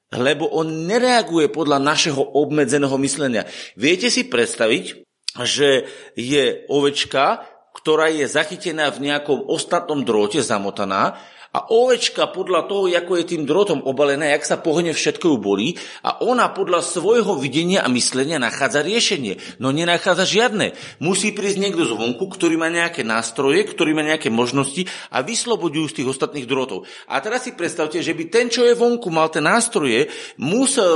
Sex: male